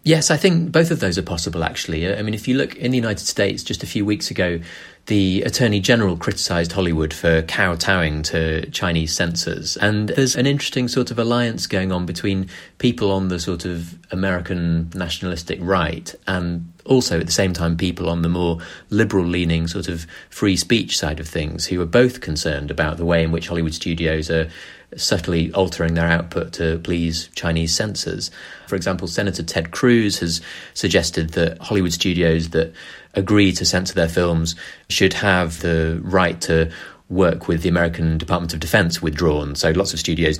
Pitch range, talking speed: 80-95 Hz, 185 wpm